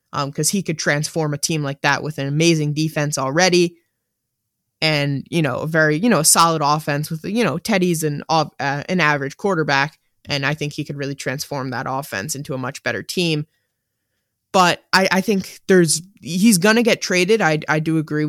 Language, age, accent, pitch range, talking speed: English, 20-39, American, 145-175 Hz, 195 wpm